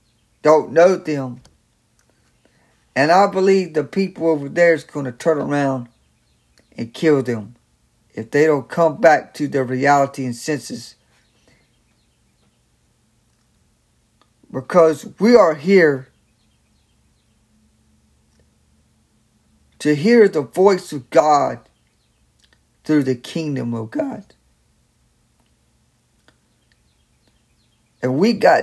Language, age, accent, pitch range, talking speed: English, 60-79, American, 130-180 Hz, 95 wpm